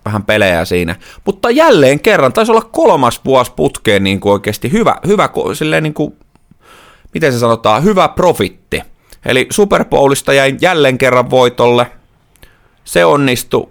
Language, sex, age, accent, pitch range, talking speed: Finnish, male, 30-49, native, 105-125 Hz, 140 wpm